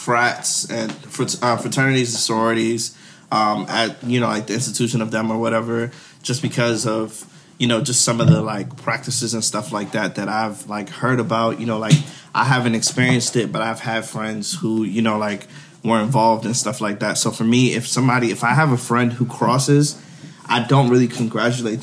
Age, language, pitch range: 20-39, English, 110-125 Hz